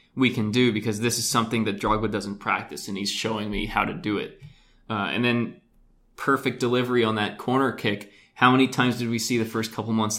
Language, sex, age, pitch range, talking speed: English, male, 20-39, 105-125 Hz, 225 wpm